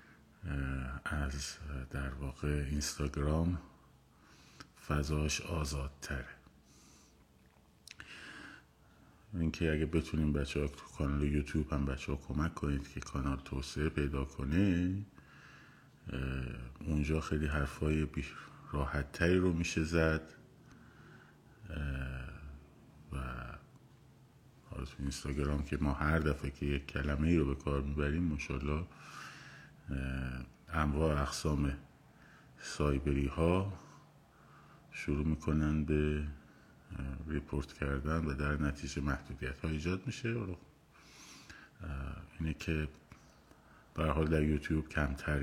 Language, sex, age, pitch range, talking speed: Persian, male, 50-69, 70-80 Hz, 90 wpm